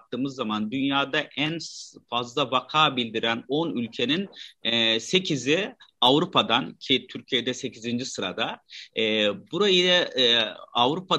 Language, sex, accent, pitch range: Turkish, male, native, 125-165 Hz